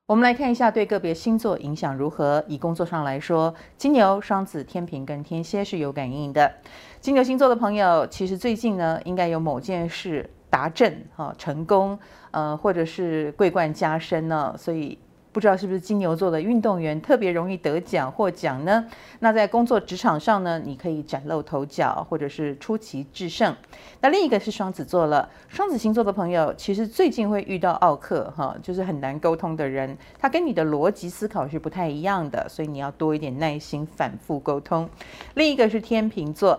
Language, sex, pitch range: Chinese, female, 155-210 Hz